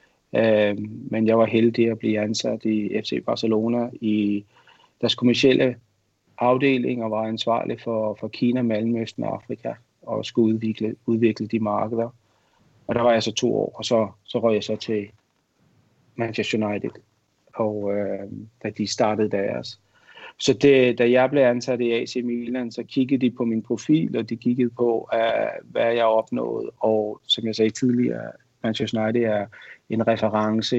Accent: native